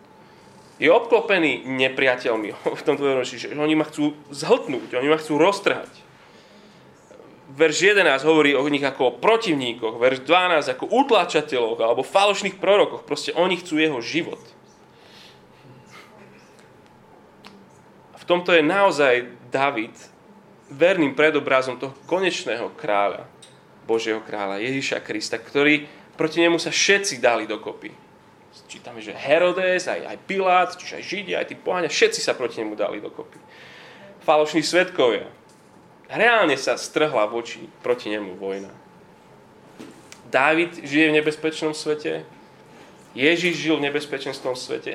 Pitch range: 130-170 Hz